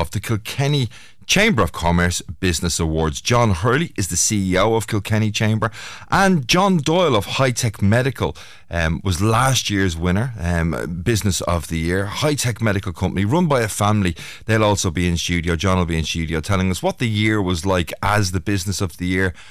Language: English